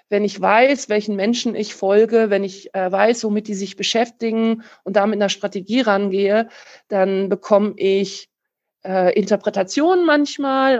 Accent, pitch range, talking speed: German, 195-230 Hz, 145 wpm